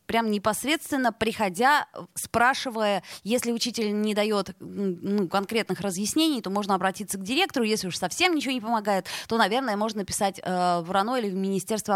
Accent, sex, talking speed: native, female, 155 wpm